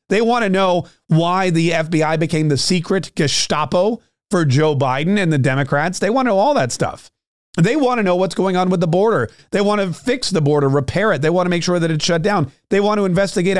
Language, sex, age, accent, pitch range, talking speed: English, male, 40-59, American, 145-190 Hz, 245 wpm